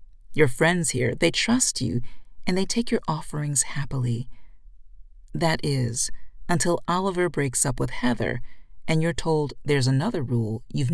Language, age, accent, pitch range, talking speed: English, 40-59, American, 120-160 Hz, 150 wpm